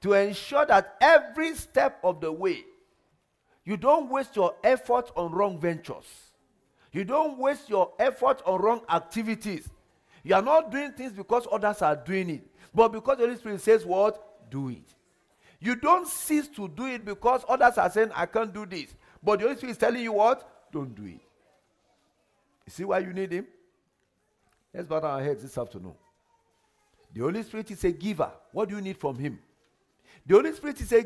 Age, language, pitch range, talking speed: 50-69, English, 190-260 Hz, 190 wpm